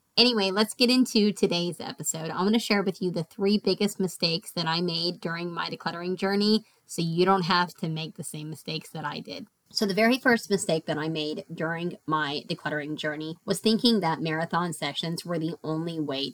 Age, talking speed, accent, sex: 30-49, 205 wpm, American, female